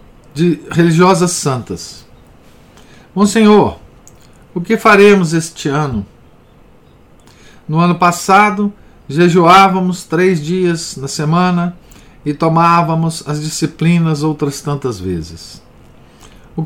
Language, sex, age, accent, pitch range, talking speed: Portuguese, male, 50-69, Brazilian, 140-180 Hz, 90 wpm